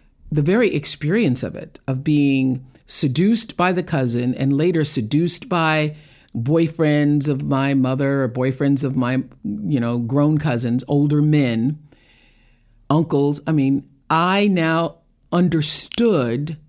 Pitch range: 125-160 Hz